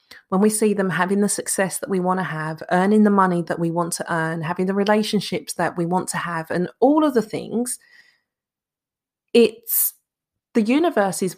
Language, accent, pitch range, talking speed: English, British, 170-220 Hz, 190 wpm